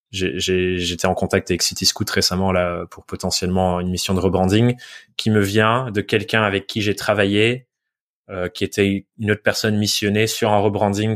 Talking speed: 185 wpm